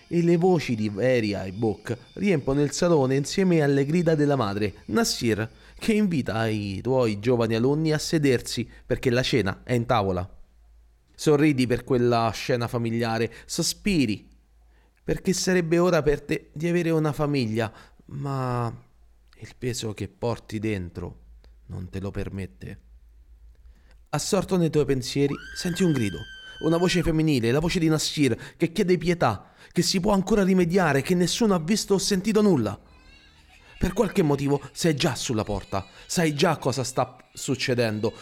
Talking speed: 150 wpm